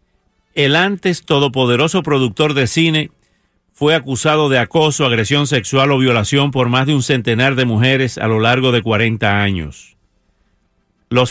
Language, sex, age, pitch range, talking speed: English, male, 50-69, 115-150 Hz, 150 wpm